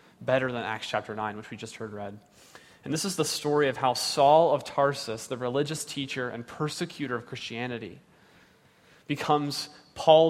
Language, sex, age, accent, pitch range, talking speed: English, male, 30-49, American, 130-165 Hz, 170 wpm